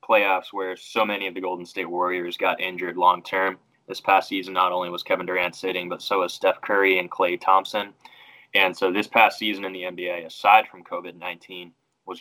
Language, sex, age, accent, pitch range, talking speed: English, male, 10-29, American, 90-105 Hz, 205 wpm